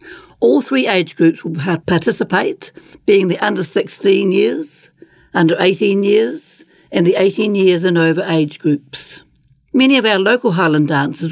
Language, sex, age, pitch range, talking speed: English, female, 60-79, 155-195 Hz, 135 wpm